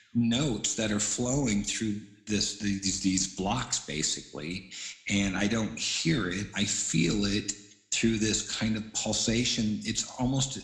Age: 50-69